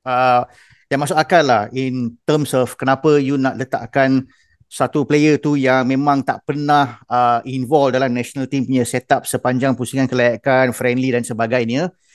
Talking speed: 160 wpm